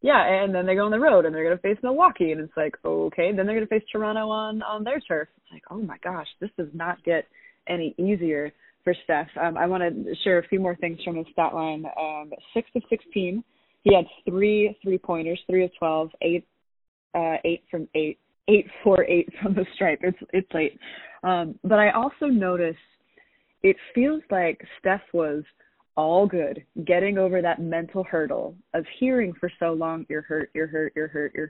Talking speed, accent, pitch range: 210 wpm, American, 165-210 Hz